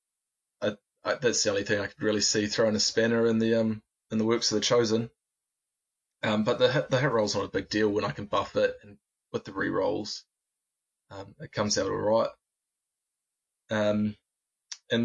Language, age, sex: English, 20-39, male